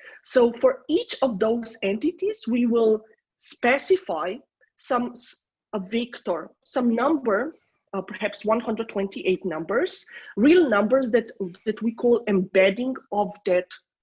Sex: female